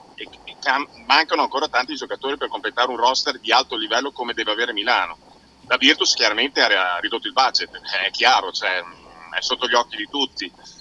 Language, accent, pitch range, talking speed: Italian, native, 115-135 Hz, 180 wpm